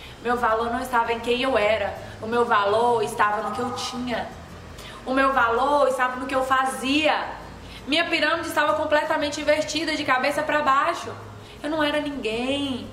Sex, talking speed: female, 170 wpm